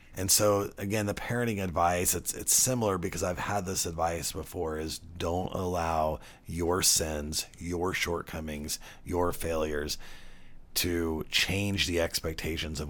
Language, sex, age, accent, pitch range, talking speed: English, male, 30-49, American, 75-90 Hz, 125 wpm